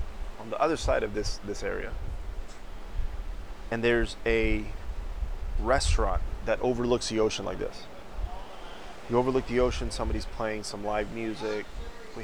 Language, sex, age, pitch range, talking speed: English, male, 30-49, 100-120 Hz, 135 wpm